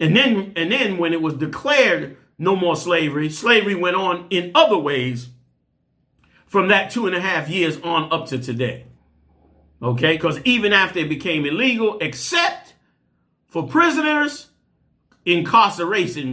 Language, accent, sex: English, American, male